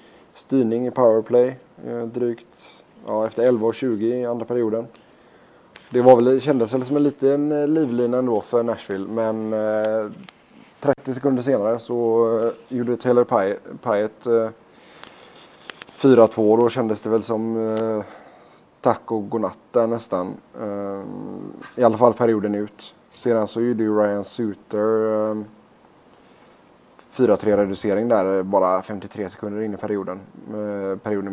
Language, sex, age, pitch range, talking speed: Swedish, male, 20-39, 105-115 Hz, 115 wpm